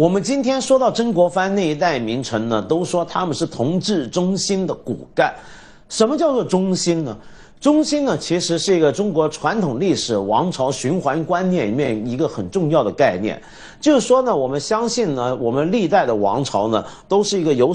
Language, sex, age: Chinese, male, 50-69